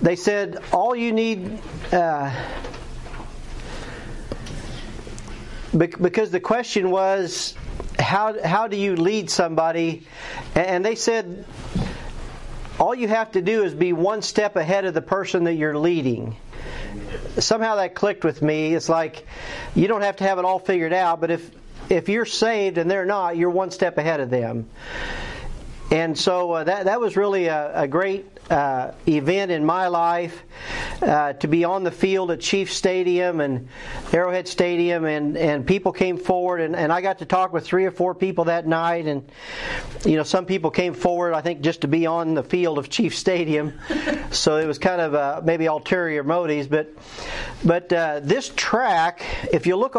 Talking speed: 175 wpm